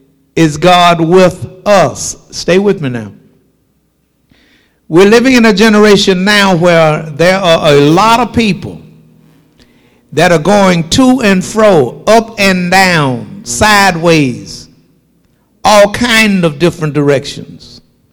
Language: English